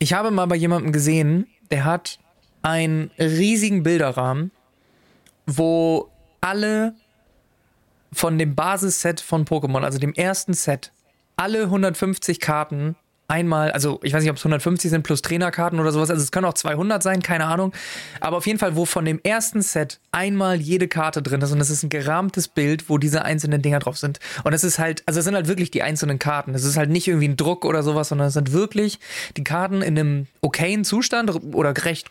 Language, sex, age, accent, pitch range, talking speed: German, male, 20-39, German, 150-190 Hz, 195 wpm